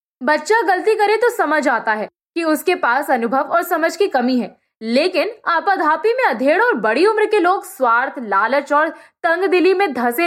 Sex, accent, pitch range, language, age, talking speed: female, native, 255-370 Hz, Hindi, 20-39, 185 wpm